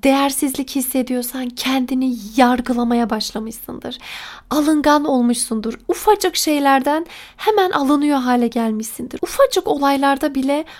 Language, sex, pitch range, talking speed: Turkish, female, 245-310 Hz, 90 wpm